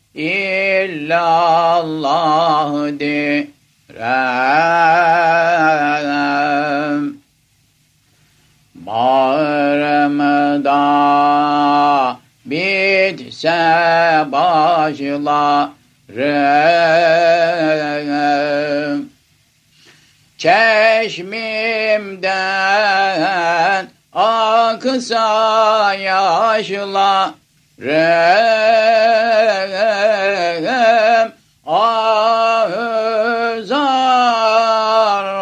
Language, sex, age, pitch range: Turkish, male, 50-69, 145-205 Hz